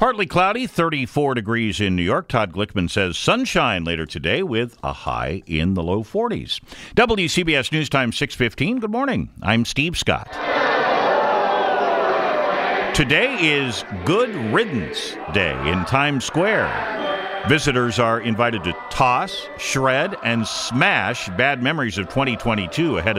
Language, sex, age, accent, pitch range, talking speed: English, male, 50-69, American, 100-140 Hz, 125 wpm